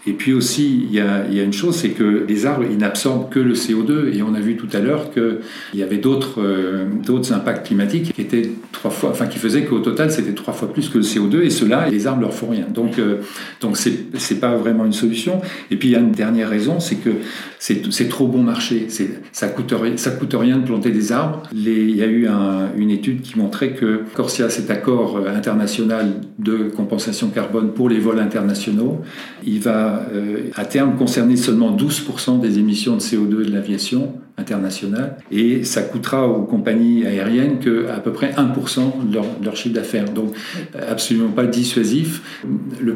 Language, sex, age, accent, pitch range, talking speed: French, male, 50-69, French, 105-130 Hz, 210 wpm